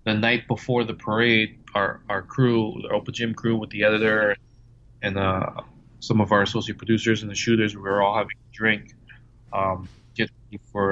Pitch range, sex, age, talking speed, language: 100-120 Hz, male, 20-39, 185 wpm, English